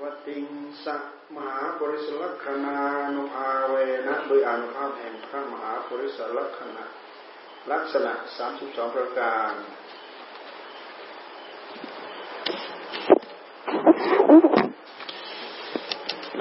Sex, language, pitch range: male, Thai, 115-145 Hz